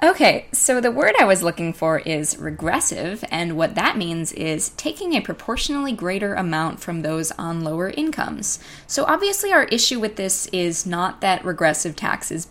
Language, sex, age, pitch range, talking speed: English, female, 10-29, 165-205 Hz, 175 wpm